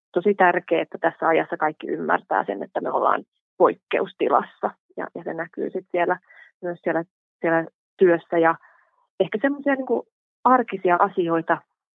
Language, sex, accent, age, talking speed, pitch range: Finnish, female, native, 30-49, 140 wpm, 170-190 Hz